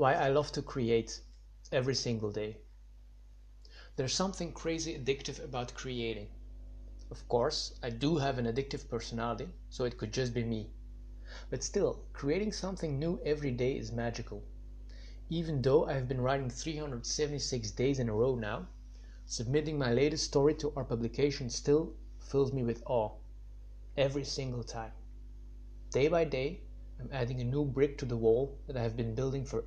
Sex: male